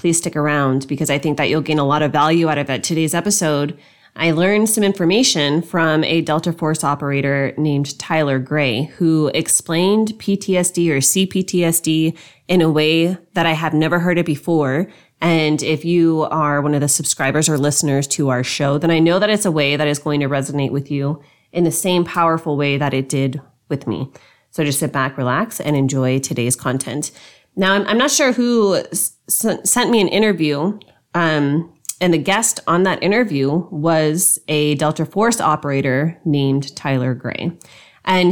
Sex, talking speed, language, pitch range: female, 185 wpm, English, 145-180 Hz